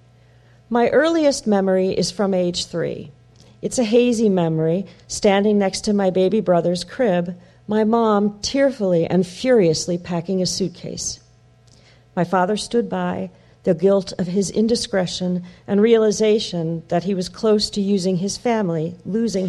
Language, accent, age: English, American, 40-59